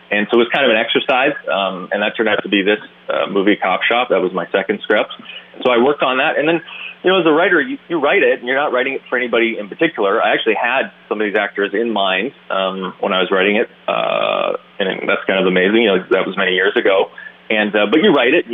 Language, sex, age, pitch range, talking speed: English, male, 30-49, 105-125 Hz, 275 wpm